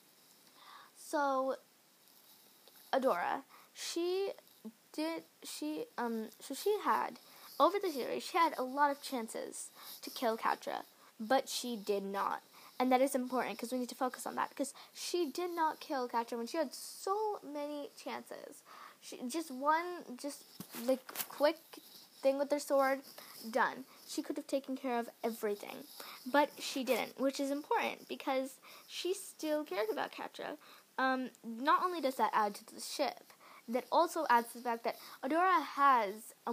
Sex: female